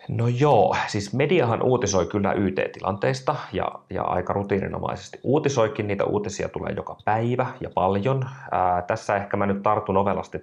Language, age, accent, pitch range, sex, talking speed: Finnish, 30-49, native, 90-105 Hz, male, 150 wpm